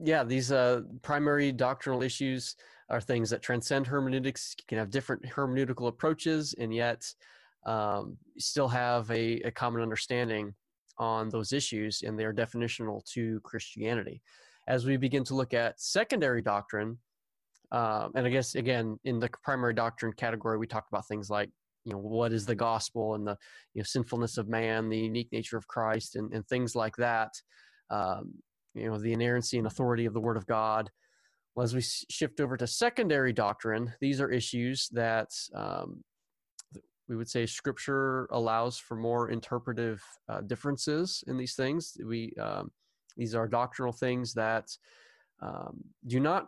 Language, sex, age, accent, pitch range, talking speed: English, male, 20-39, American, 110-130 Hz, 170 wpm